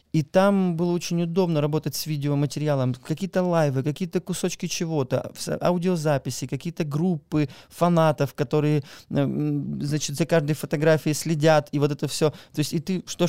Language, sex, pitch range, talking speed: Russian, male, 145-180 Hz, 140 wpm